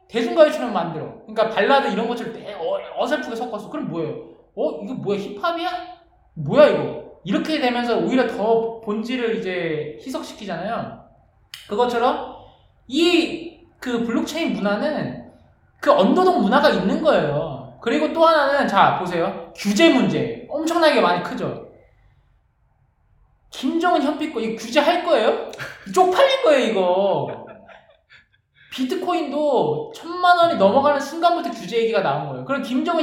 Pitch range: 205-305 Hz